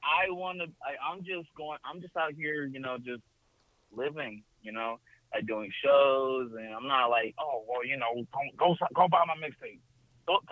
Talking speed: 195 wpm